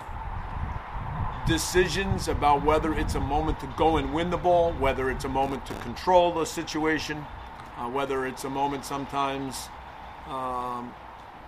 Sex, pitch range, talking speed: male, 135-160 Hz, 140 wpm